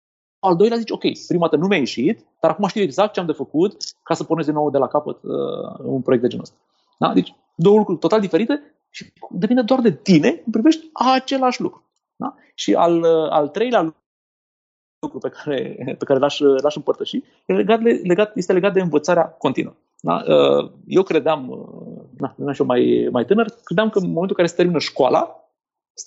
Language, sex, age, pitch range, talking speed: Romanian, male, 30-49, 145-230 Hz, 200 wpm